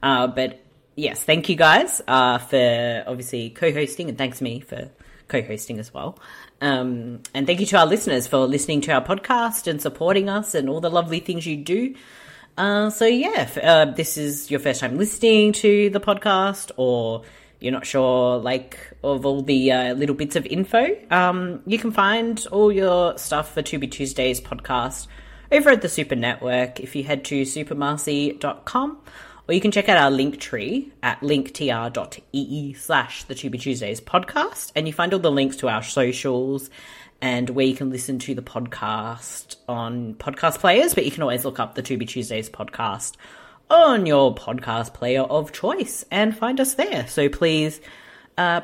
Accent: Australian